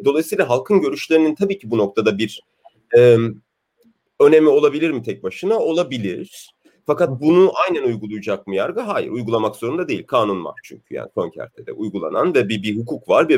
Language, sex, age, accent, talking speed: German, male, 40-59, Turkish, 170 wpm